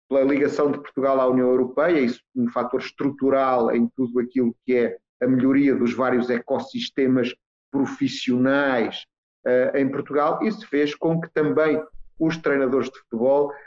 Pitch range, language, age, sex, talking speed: 125-150 Hz, Portuguese, 40-59, male, 155 wpm